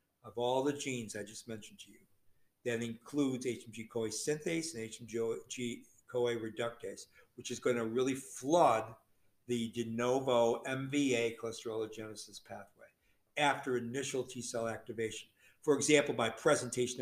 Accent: American